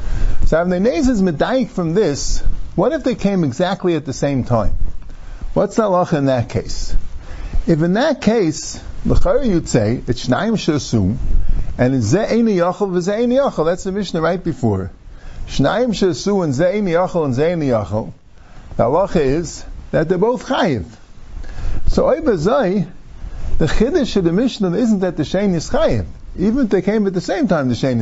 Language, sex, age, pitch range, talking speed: English, male, 50-69, 135-205 Hz, 175 wpm